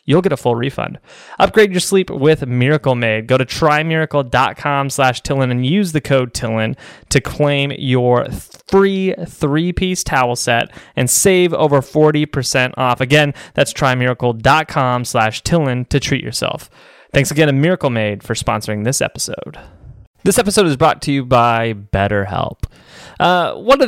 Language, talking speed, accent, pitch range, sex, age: English, 150 wpm, American, 105-140 Hz, male, 20-39